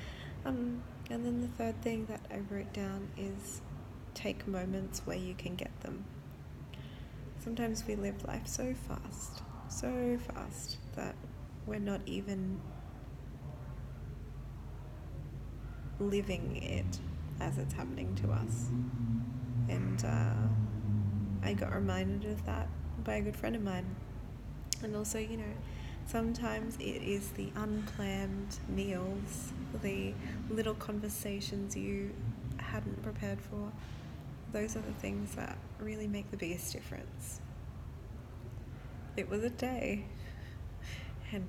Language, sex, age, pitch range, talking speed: English, female, 20-39, 95-125 Hz, 120 wpm